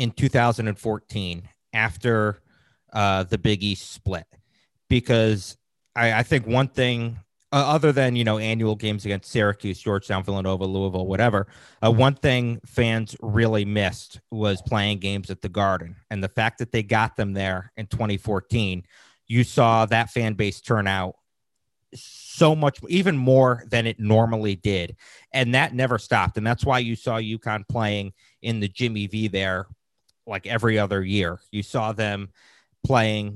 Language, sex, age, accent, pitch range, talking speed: English, male, 30-49, American, 100-120 Hz, 160 wpm